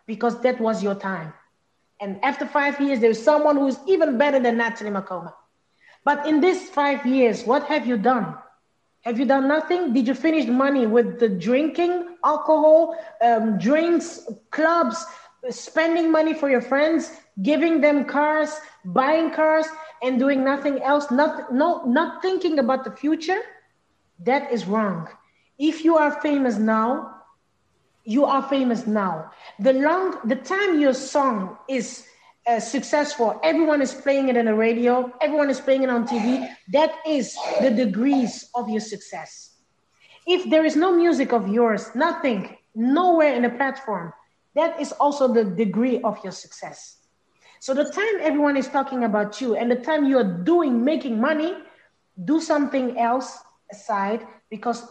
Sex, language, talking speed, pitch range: female, English, 160 wpm, 235-310 Hz